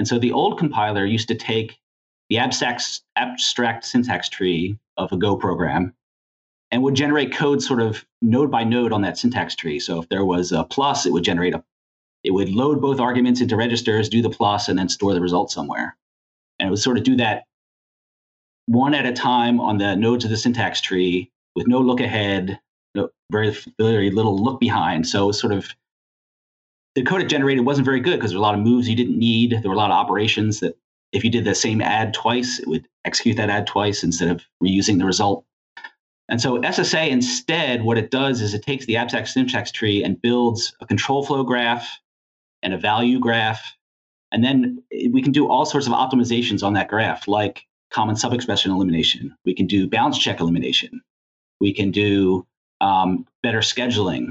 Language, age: English, 30-49